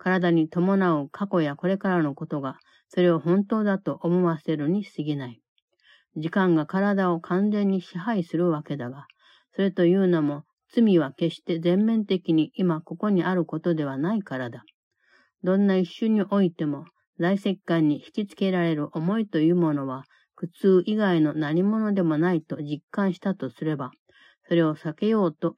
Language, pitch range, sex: Japanese, 155-195 Hz, female